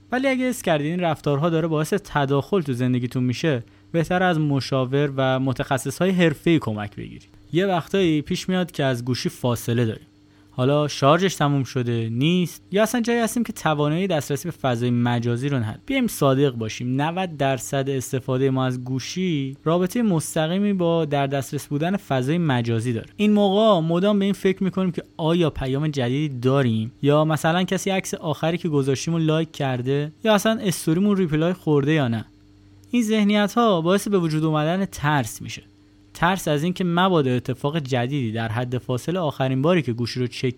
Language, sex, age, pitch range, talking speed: Persian, male, 20-39, 130-180 Hz, 170 wpm